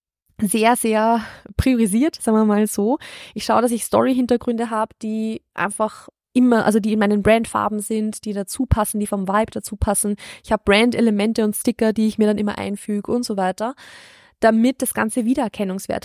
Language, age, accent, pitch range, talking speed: German, 20-39, German, 210-245 Hz, 180 wpm